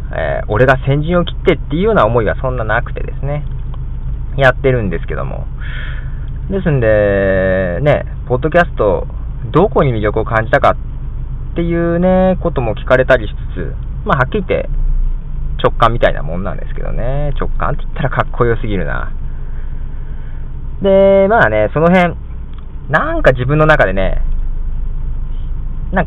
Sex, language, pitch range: male, Japanese, 100-155 Hz